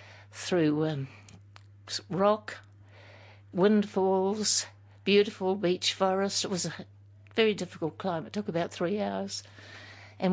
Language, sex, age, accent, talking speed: English, female, 60-79, British, 110 wpm